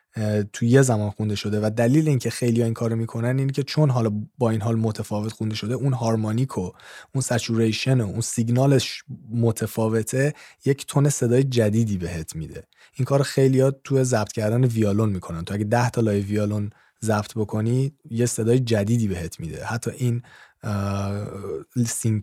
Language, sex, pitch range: Persian, male, 105-120 Hz